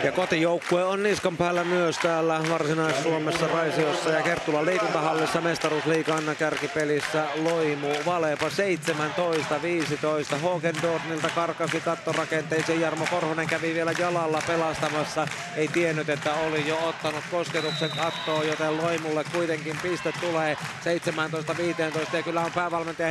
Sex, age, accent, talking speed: male, 30-49, native, 115 wpm